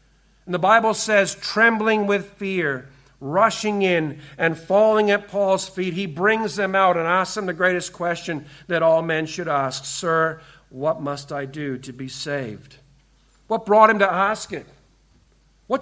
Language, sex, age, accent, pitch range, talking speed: English, male, 50-69, American, 175-215 Hz, 165 wpm